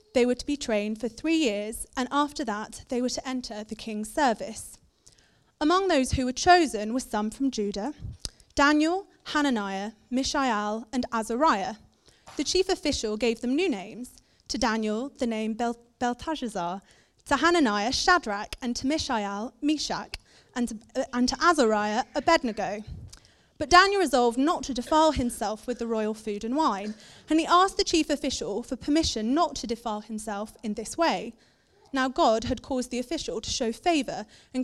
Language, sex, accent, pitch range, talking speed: English, female, British, 225-300 Hz, 165 wpm